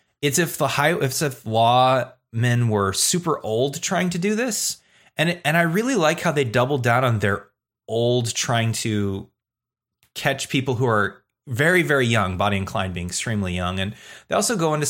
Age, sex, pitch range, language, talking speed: 30-49, male, 105-145 Hz, English, 195 wpm